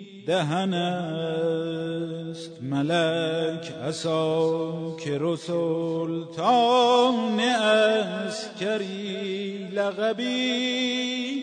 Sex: male